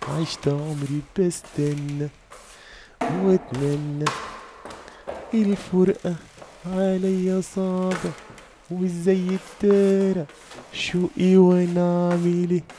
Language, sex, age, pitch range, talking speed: French, male, 30-49, 125-160 Hz, 55 wpm